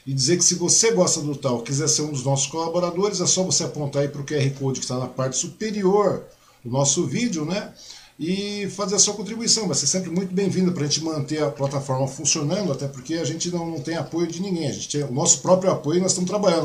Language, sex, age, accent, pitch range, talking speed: Portuguese, male, 50-69, Brazilian, 140-180 Hz, 245 wpm